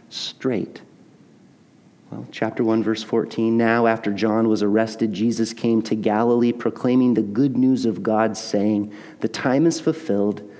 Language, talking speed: English, 145 wpm